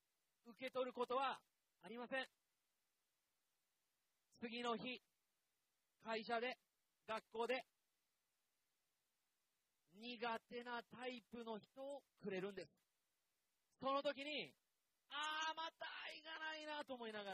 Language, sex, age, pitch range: Japanese, male, 40-59, 215-275 Hz